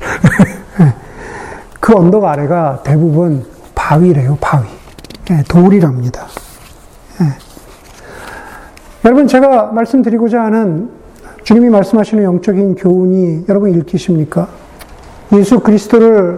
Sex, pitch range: male, 170-215 Hz